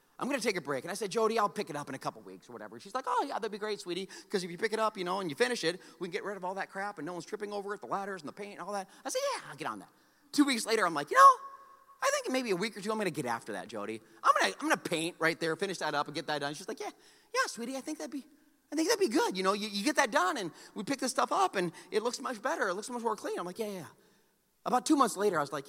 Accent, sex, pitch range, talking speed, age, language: American, male, 165-260 Hz, 355 wpm, 30-49, English